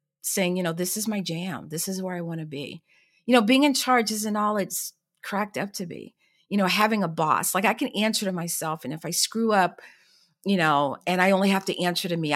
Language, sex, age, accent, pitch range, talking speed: English, female, 50-69, American, 165-200 Hz, 255 wpm